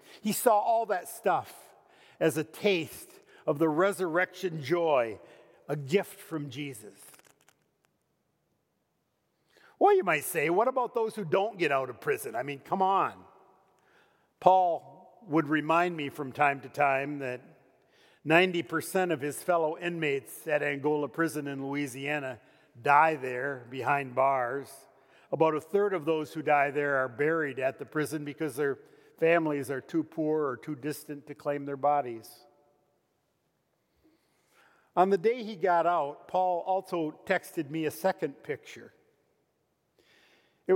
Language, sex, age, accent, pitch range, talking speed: English, male, 50-69, American, 140-185 Hz, 140 wpm